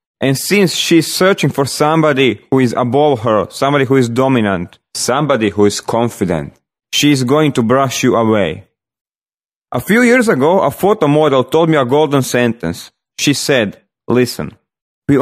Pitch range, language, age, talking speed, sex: 120-155 Hz, English, 30-49, 160 wpm, male